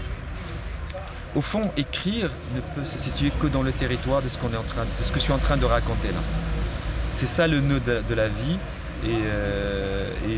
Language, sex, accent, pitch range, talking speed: French, male, French, 115-145 Hz, 185 wpm